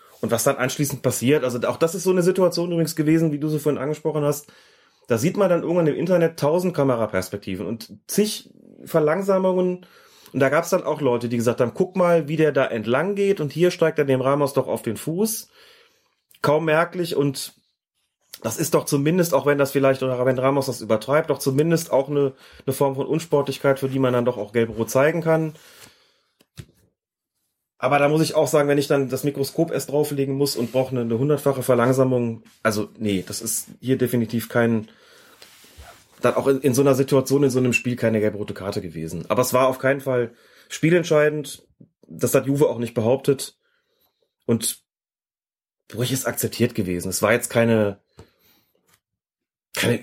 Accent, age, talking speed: German, 30-49, 190 wpm